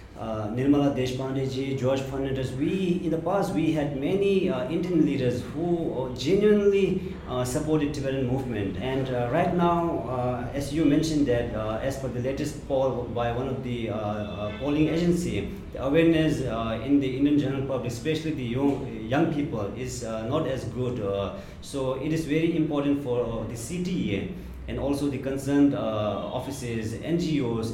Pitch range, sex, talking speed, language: 115-145 Hz, male, 175 wpm, English